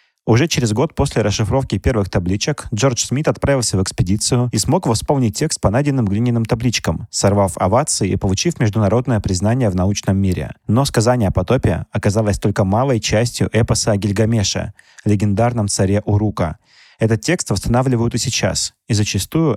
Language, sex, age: Russian, male, 30-49